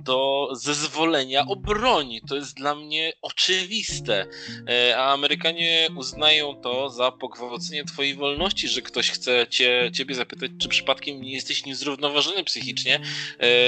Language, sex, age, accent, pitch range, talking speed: Polish, male, 20-39, native, 130-150 Hz, 125 wpm